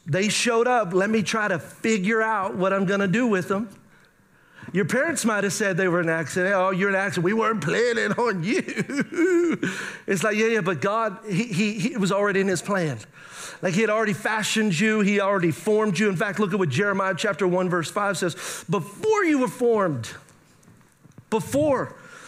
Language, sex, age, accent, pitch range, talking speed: English, male, 40-59, American, 190-230 Hz, 195 wpm